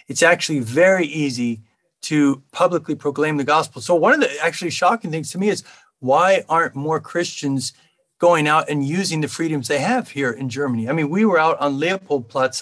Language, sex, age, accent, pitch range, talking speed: English, male, 40-59, American, 145-180 Hz, 195 wpm